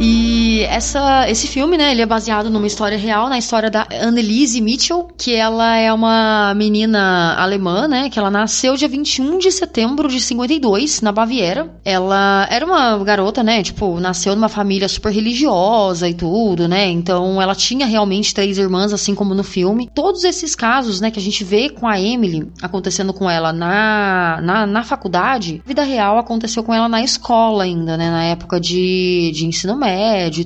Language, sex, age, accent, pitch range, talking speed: Portuguese, female, 20-39, Brazilian, 195-245 Hz, 185 wpm